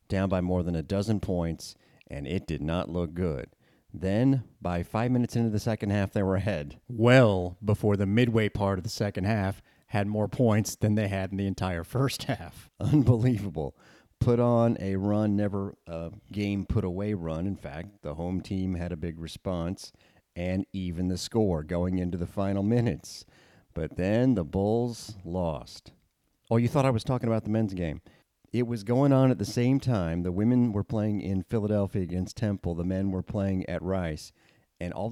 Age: 40-59